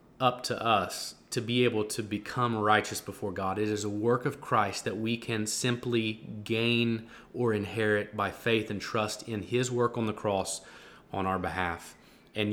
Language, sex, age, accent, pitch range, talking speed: English, male, 20-39, American, 105-120 Hz, 180 wpm